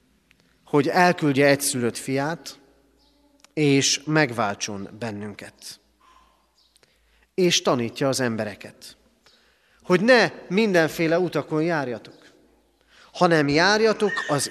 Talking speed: 85 wpm